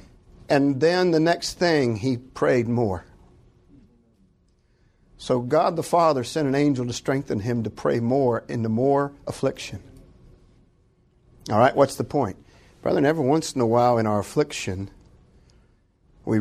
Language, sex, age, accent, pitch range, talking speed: English, male, 50-69, American, 110-140 Hz, 145 wpm